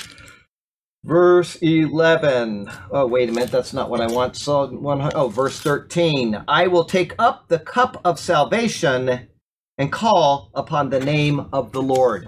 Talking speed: 145 wpm